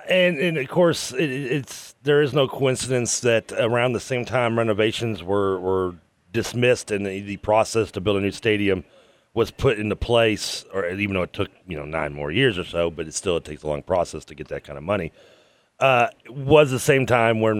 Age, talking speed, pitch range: 30-49, 220 wpm, 95-125 Hz